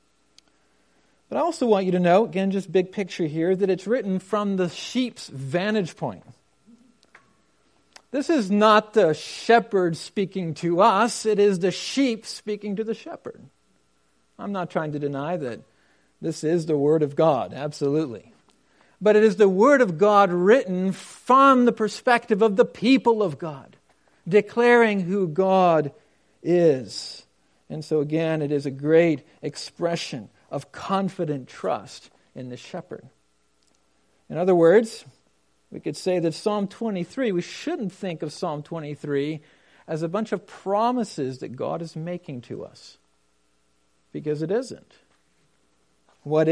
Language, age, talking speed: English, 50-69, 145 wpm